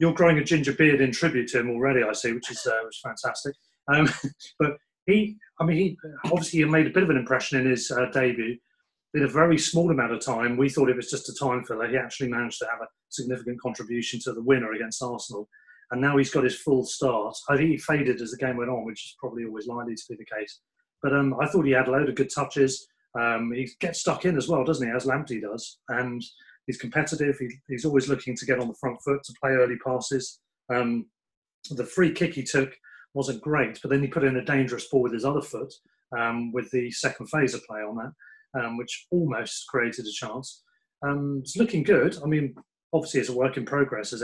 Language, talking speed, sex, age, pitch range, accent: English, 235 wpm, male, 30-49, 120-145 Hz, British